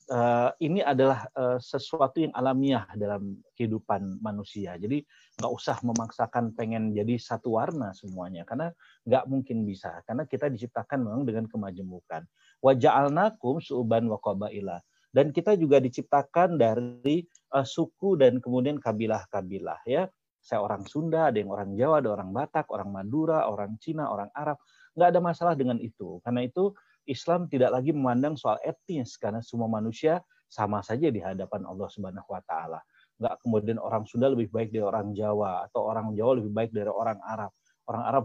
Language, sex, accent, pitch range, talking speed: Indonesian, male, native, 110-145 Hz, 155 wpm